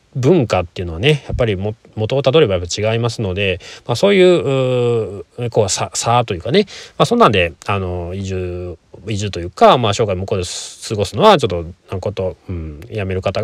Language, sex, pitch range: Japanese, male, 95-130 Hz